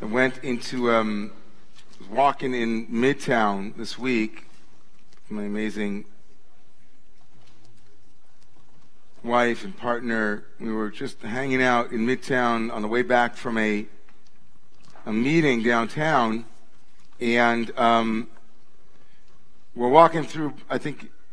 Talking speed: 105 wpm